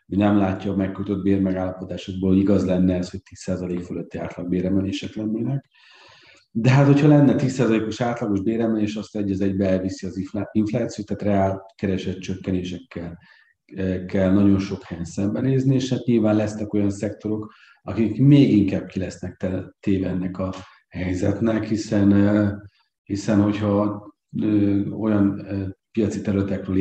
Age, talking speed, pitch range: 40-59, 135 wpm, 95-105 Hz